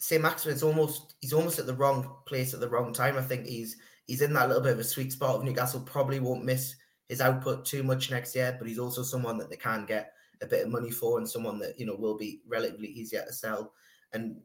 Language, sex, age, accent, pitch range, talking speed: English, male, 20-39, British, 110-135 Hz, 250 wpm